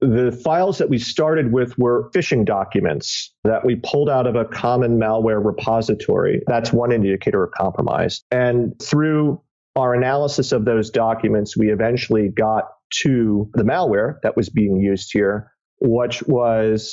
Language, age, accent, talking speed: English, 40-59, American, 150 wpm